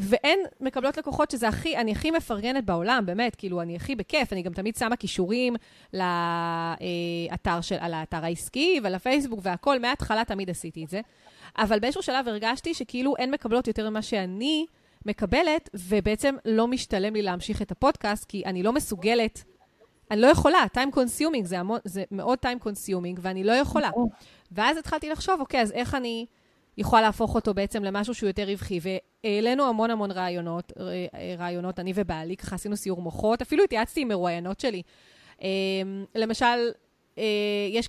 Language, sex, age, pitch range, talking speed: Hebrew, female, 30-49, 190-250 Hz, 155 wpm